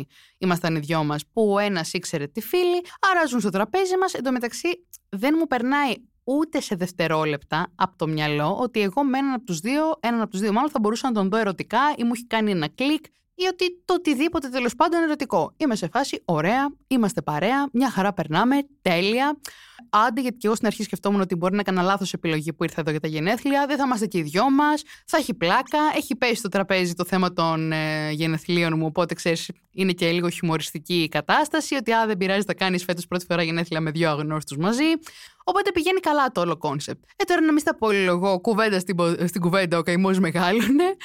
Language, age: Greek, 20-39